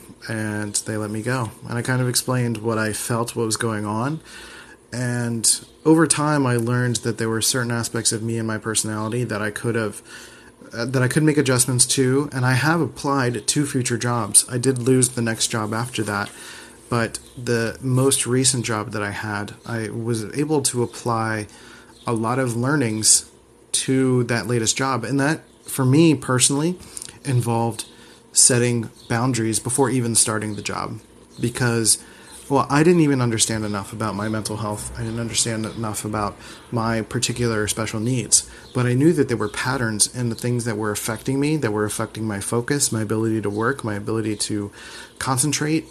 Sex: male